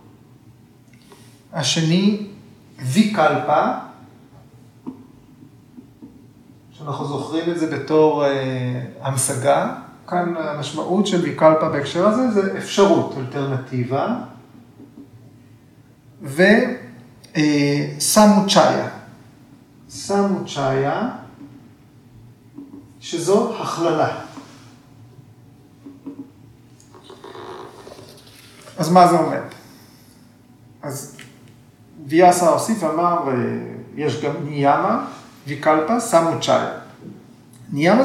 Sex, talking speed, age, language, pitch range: male, 60 wpm, 40-59, Hebrew, 125-170 Hz